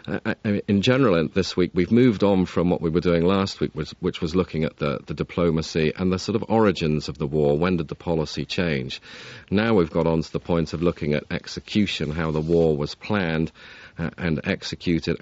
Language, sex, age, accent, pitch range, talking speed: English, male, 40-59, British, 75-90 Hz, 215 wpm